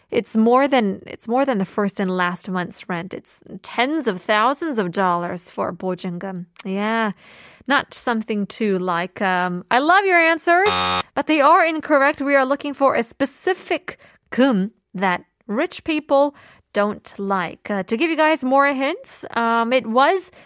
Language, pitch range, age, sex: Korean, 195-275 Hz, 20-39, female